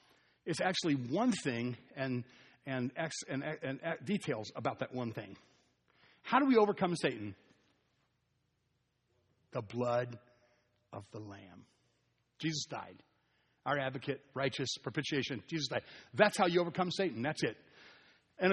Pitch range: 140-195 Hz